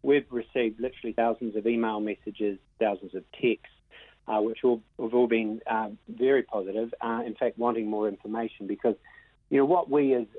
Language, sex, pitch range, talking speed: English, male, 110-130 Hz, 180 wpm